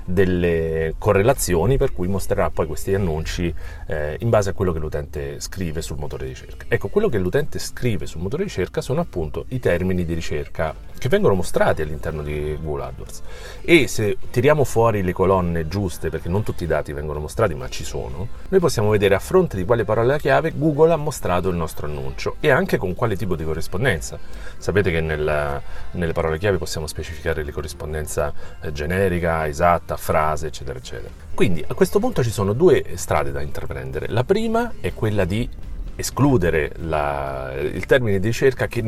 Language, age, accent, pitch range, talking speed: Italian, 40-59, native, 80-110 Hz, 180 wpm